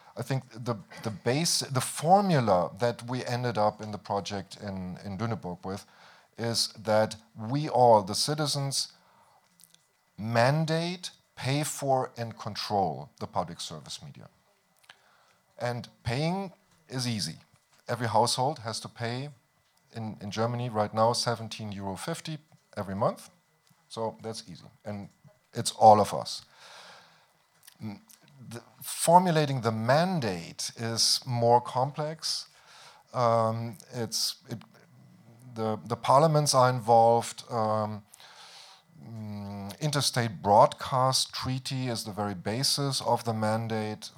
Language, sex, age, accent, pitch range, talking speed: French, male, 50-69, German, 105-135 Hz, 115 wpm